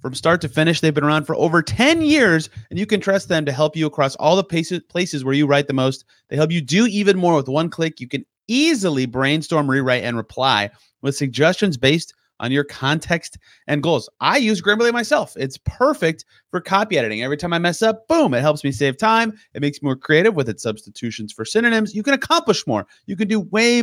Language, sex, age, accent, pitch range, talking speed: English, male, 30-49, American, 135-180 Hz, 225 wpm